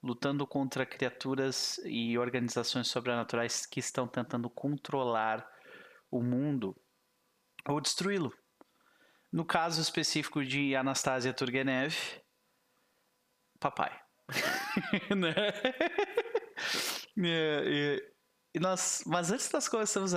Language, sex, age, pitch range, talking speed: Portuguese, male, 20-39, 120-175 Hz, 75 wpm